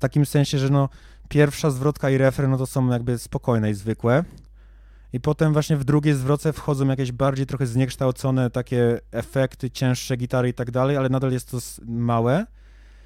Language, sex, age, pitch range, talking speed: Polish, male, 20-39, 110-135 Hz, 180 wpm